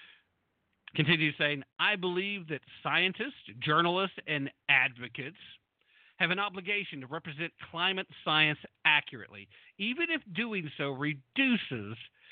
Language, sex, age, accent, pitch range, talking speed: English, male, 50-69, American, 135-180 Hz, 110 wpm